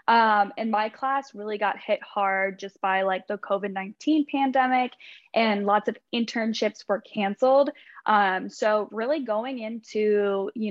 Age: 10-29